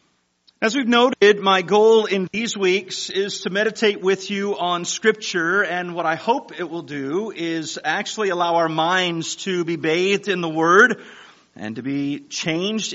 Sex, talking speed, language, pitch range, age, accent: male, 170 wpm, English, 150-195 Hz, 40-59, American